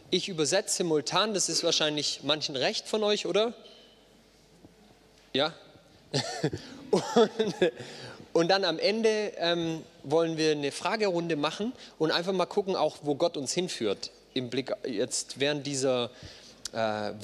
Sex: male